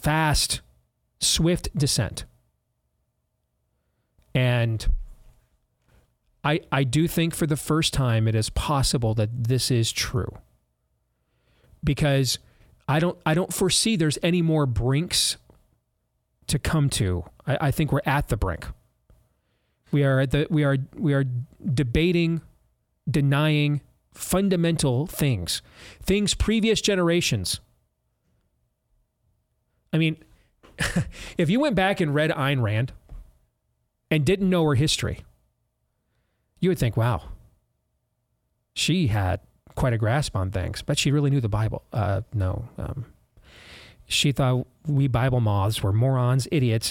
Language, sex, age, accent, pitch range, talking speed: English, male, 40-59, American, 110-155 Hz, 125 wpm